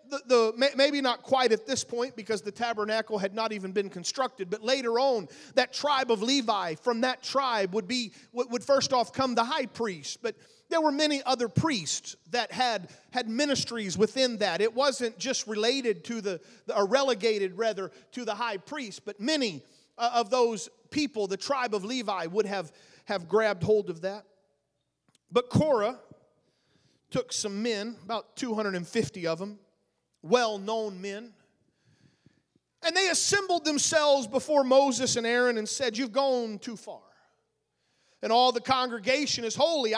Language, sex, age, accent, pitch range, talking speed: English, male, 40-59, American, 210-265 Hz, 160 wpm